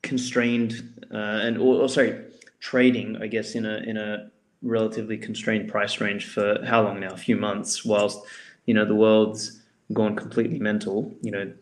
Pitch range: 110-125 Hz